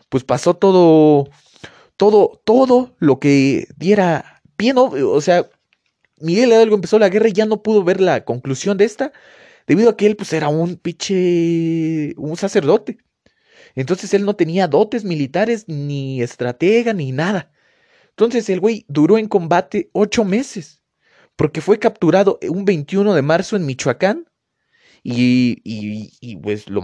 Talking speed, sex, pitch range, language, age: 150 wpm, male, 135-205 Hz, Spanish, 30-49